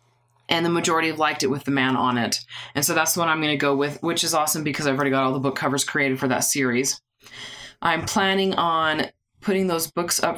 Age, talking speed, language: 20-39, 250 wpm, English